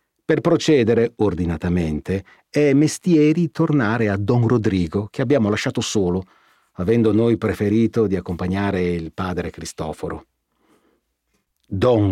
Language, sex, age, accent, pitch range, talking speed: Italian, male, 40-59, native, 95-135 Hz, 110 wpm